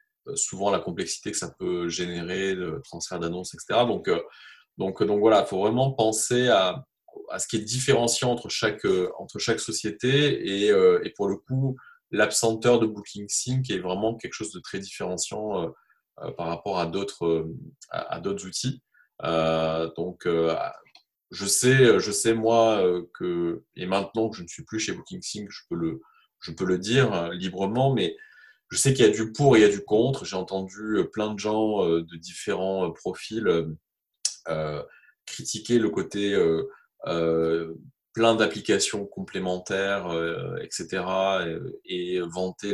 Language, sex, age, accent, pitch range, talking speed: French, male, 20-39, French, 90-120 Hz, 160 wpm